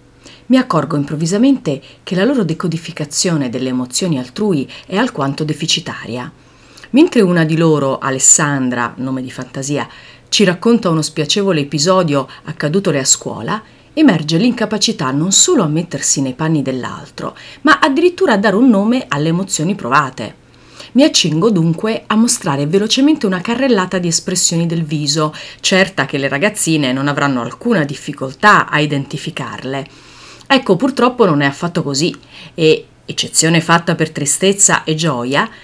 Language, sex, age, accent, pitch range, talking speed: Italian, female, 40-59, native, 140-210 Hz, 140 wpm